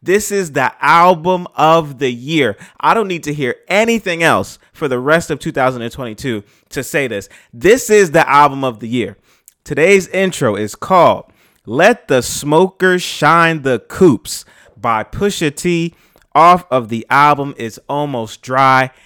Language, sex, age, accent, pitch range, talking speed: English, male, 30-49, American, 130-160 Hz, 155 wpm